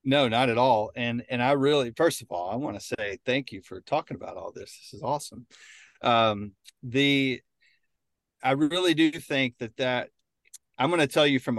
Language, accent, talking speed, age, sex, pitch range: English, American, 200 wpm, 40-59, male, 110-130 Hz